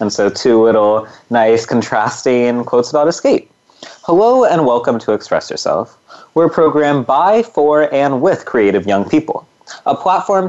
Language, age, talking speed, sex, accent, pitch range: English, 30-49, 155 wpm, male, American, 115-175 Hz